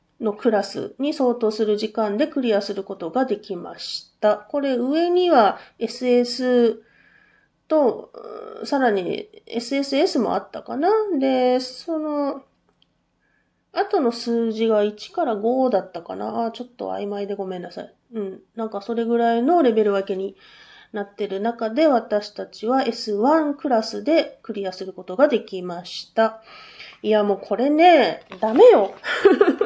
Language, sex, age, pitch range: Japanese, female, 30-49, 215-340 Hz